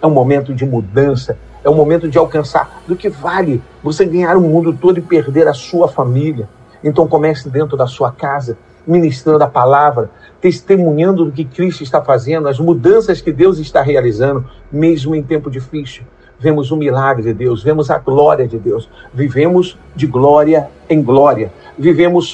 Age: 50-69